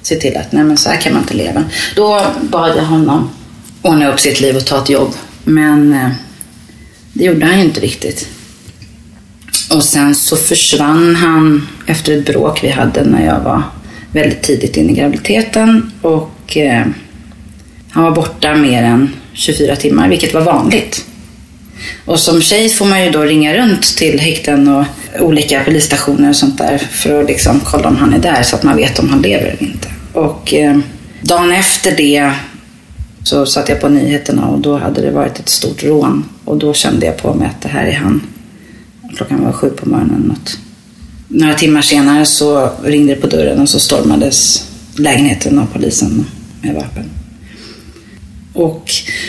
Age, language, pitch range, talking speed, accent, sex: 30-49, English, 145-175 Hz, 175 wpm, Swedish, female